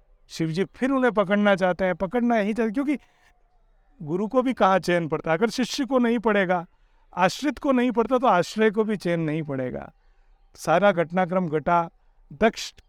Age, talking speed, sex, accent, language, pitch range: 50-69, 170 wpm, male, native, Hindi, 170-230 Hz